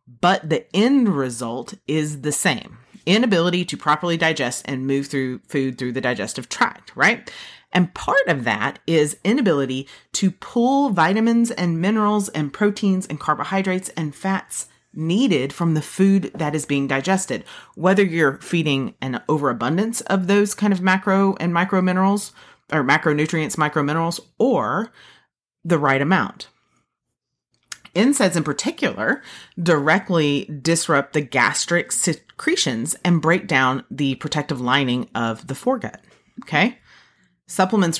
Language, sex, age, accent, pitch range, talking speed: English, female, 30-49, American, 140-190 Hz, 135 wpm